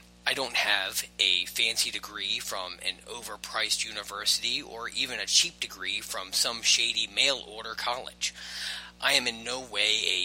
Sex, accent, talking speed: male, American, 160 wpm